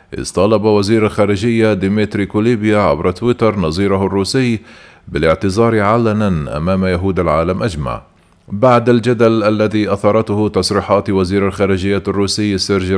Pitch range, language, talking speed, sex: 100-115 Hz, Arabic, 110 wpm, male